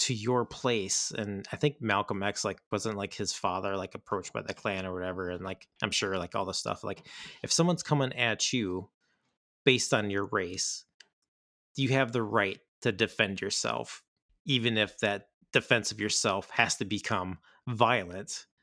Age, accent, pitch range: 30-49, American, 95-125 Hz